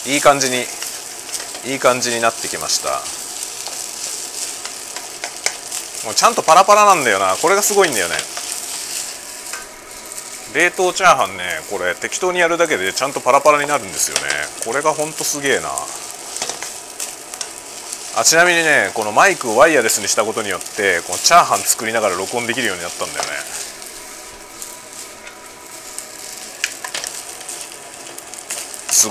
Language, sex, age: Japanese, male, 30-49